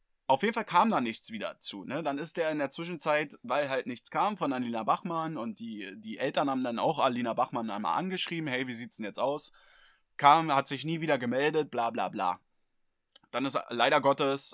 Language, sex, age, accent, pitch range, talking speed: German, male, 20-39, German, 135-175 Hz, 215 wpm